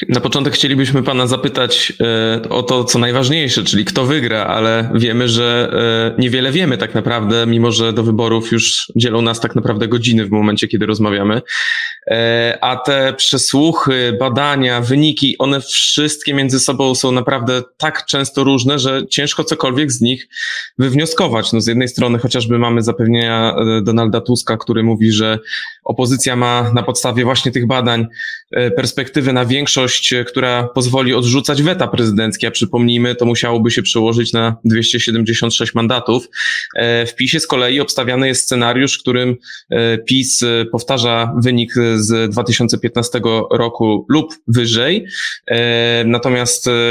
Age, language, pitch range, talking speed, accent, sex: 20-39, Polish, 115-130 Hz, 135 wpm, native, male